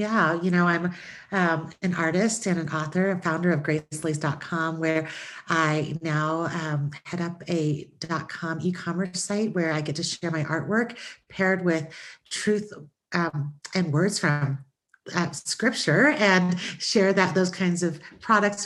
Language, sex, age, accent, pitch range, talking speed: English, female, 40-59, American, 155-180 Hz, 150 wpm